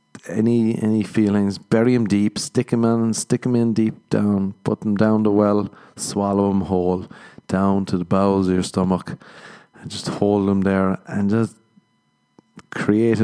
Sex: male